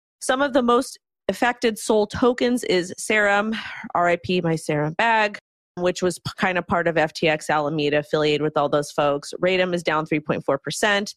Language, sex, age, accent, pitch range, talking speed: English, female, 30-49, American, 160-200 Hz, 160 wpm